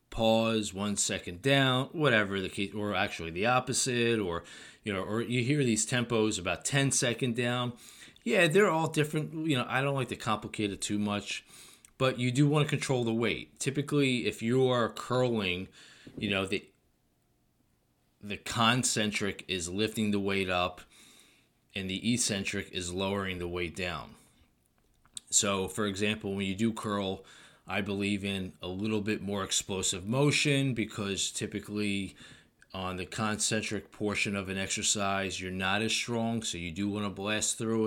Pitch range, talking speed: 95-115 Hz, 165 wpm